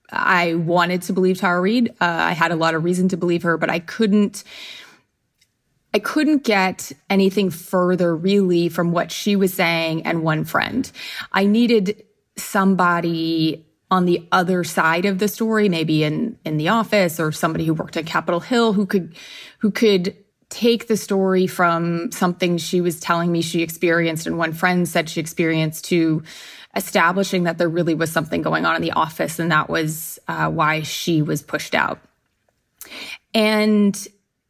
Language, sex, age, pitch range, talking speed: English, female, 20-39, 165-210 Hz, 170 wpm